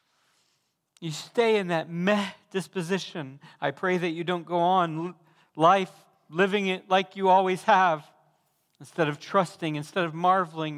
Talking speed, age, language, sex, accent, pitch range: 145 wpm, 40-59, English, male, American, 150-195 Hz